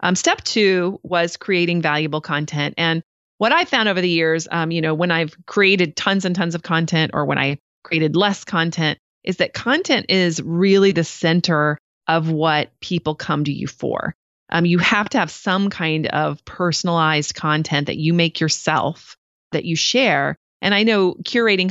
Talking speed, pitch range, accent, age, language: 180 wpm, 155-195 Hz, American, 30-49, English